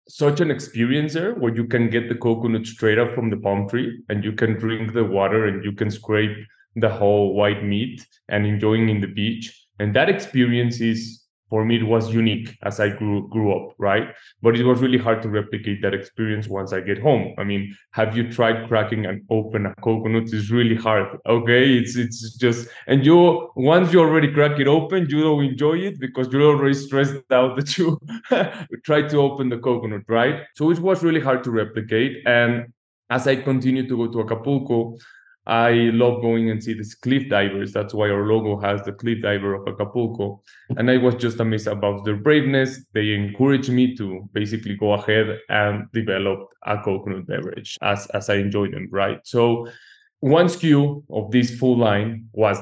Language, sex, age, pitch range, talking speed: English, male, 20-39, 105-130 Hz, 195 wpm